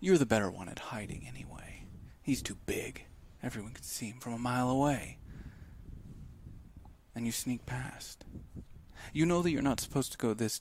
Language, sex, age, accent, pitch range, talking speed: English, male, 40-59, American, 90-125 Hz, 175 wpm